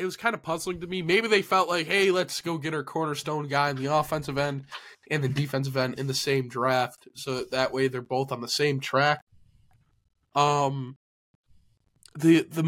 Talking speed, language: 200 wpm, English